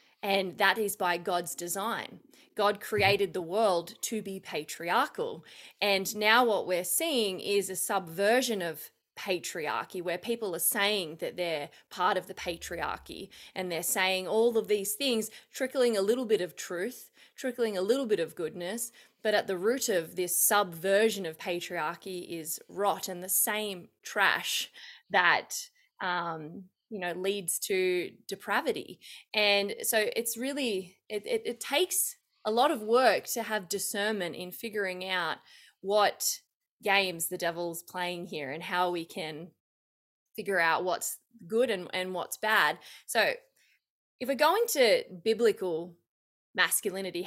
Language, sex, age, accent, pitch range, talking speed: English, female, 20-39, Australian, 180-225 Hz, 145 wpm